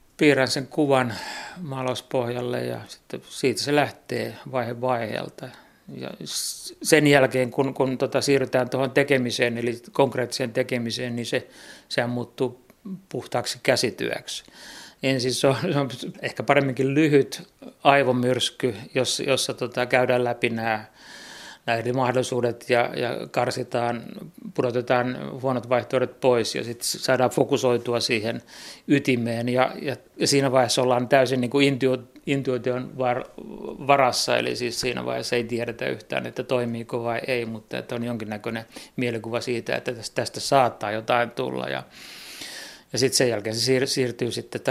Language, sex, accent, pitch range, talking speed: Finnish, male, native, 120-130 Hz, 125 wpm